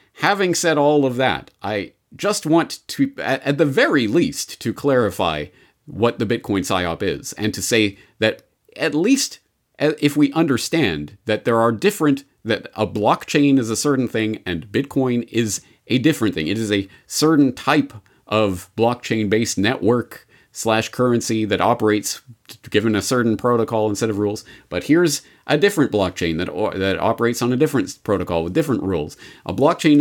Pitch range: 105-145 Hz